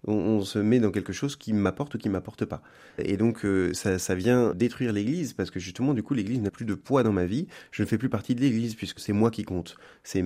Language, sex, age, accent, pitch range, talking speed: French, male, 30-49, French, 90-115 Hz, 275 wpm